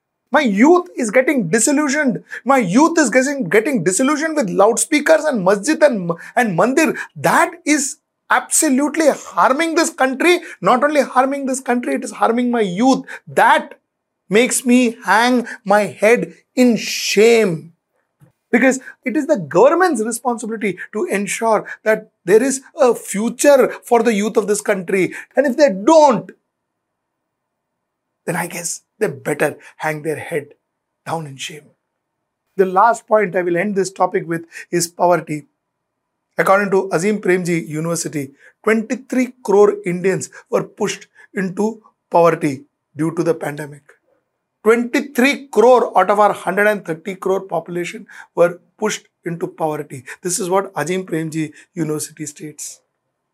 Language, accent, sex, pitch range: English, Indian, male, 180-265 Hz